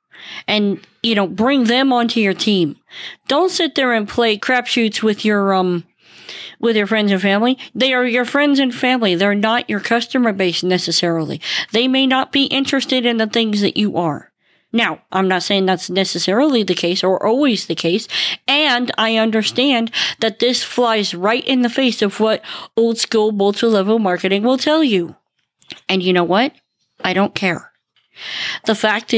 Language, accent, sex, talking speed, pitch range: English, American, female, 175 wpm, 195-245 Hz